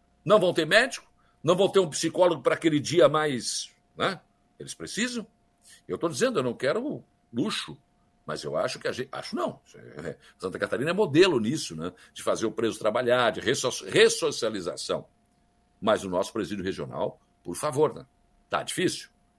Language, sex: Portuguese, male